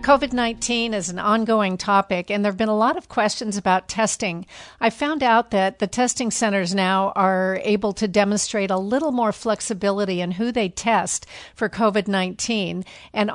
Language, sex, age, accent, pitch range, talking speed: English, female, 50-69, American, 190-220 Hz, 170 wpm